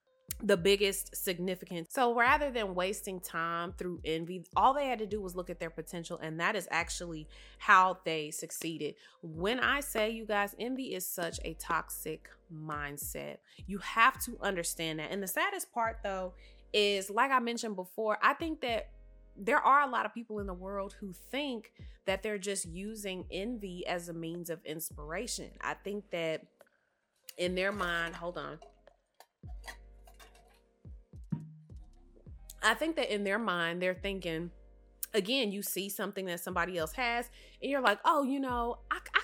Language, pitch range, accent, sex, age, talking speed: English, 175-230 Hz, American, female, 20-39, 165 wpm